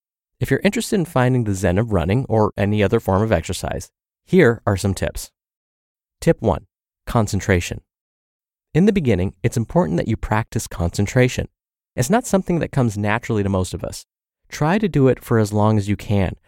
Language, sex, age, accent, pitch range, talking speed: English, male, 30-49, American, 100-135 Hz, 185 wpm